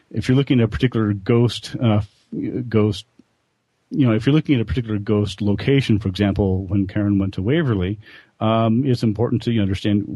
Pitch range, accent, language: 95-115 Hz, American, English